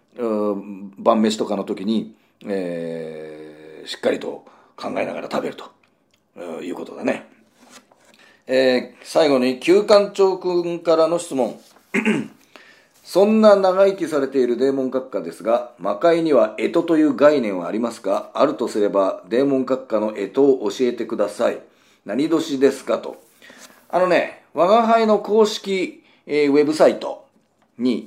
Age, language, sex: 40-59, Japanese, male